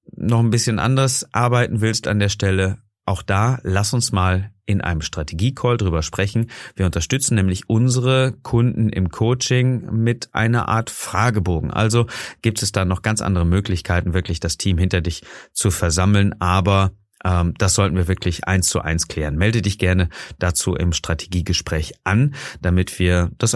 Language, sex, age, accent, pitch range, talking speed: German, male, 30-49, German, 90-120 Hz, 165 wpm